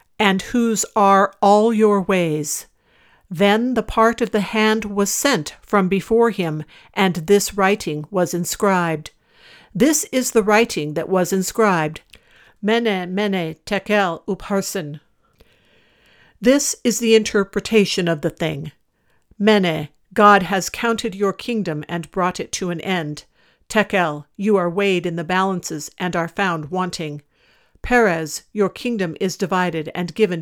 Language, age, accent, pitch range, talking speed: English, 60-79, American, 175-220 Hz, 140 wpm